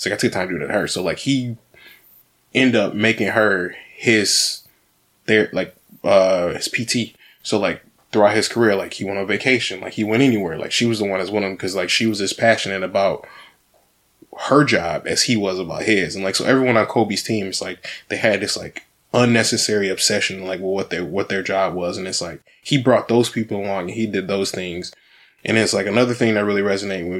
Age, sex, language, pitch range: 20-39, male, English, 95-115 Hz